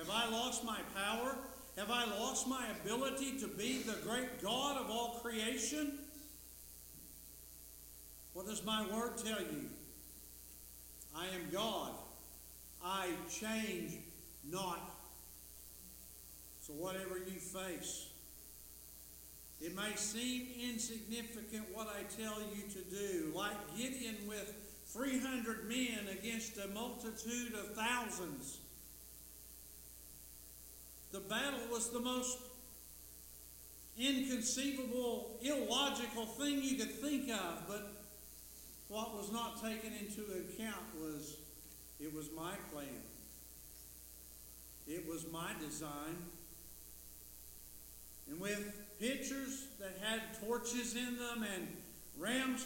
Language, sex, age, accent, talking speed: English, male, 50-69, American, 105 wpm